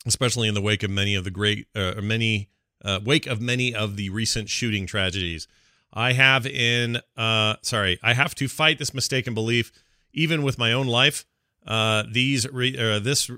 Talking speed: 190 wpm